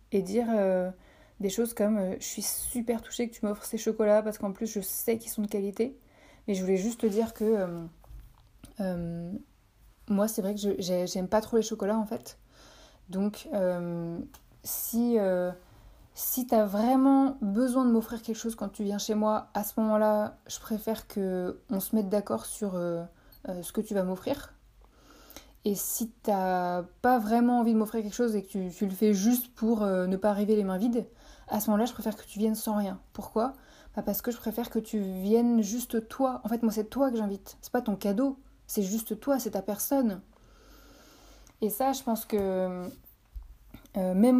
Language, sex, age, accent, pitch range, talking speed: French, female, 20-39, French, 195-230 Hz, 205 wpm